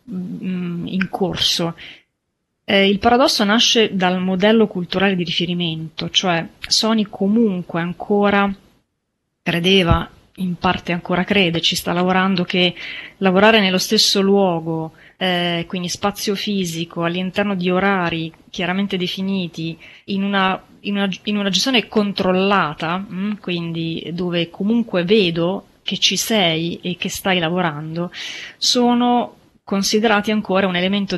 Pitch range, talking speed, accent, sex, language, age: 175-205 Hz, 120 wpm, native, female, Italian, 30-49